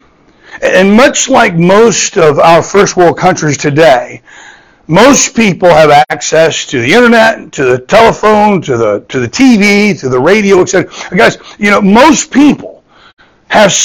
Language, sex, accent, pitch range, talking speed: English, male, American, 150-205 Hz, 150 wpm